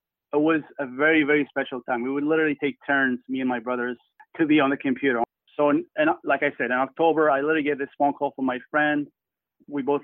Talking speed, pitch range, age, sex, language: 235 wpm, 130-165 Hz, 30-49, male, English